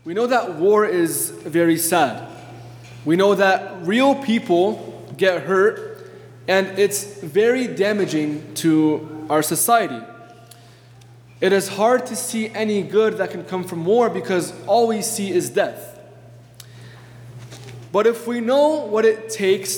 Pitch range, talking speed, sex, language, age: 125-210 Hz, 140 wpm, male, English, 20-39